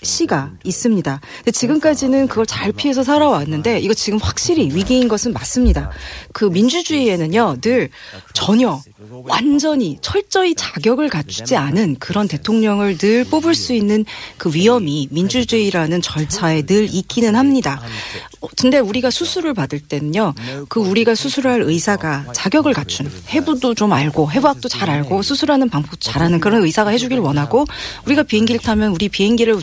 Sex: female